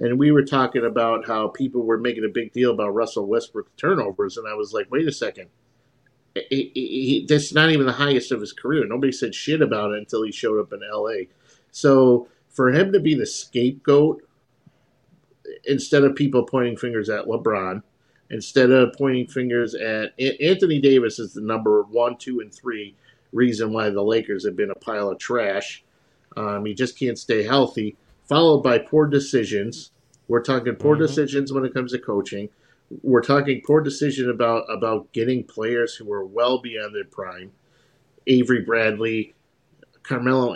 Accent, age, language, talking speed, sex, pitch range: American, 50-69, English, 170 wpm, male, 115-155 Hz